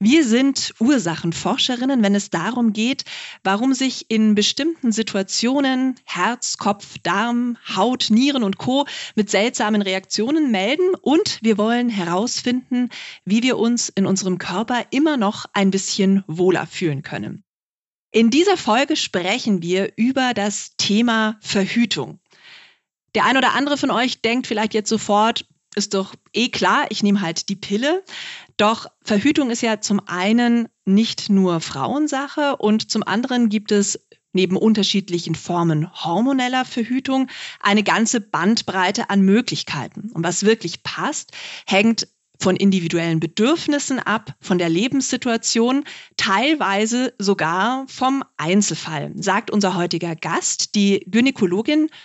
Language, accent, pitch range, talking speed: German, German, 195-250 Hz, 130 wpm